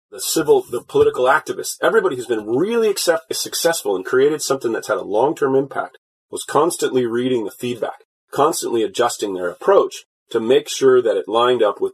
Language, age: English, 30-49